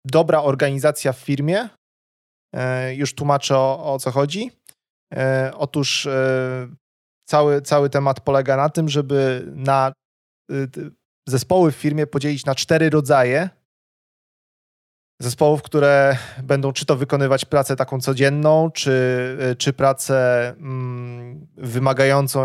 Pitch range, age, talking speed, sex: 125-145 Hz, 30-49, 105 wpm, male